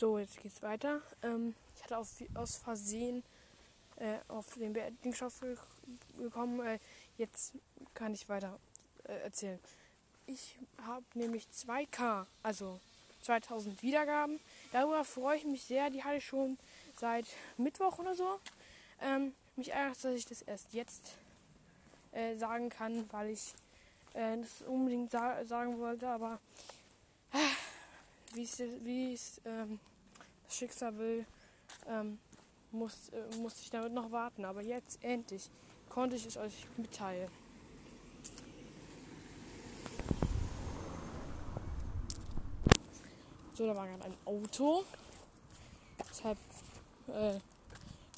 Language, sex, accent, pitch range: German, female, German, 215-255 Hz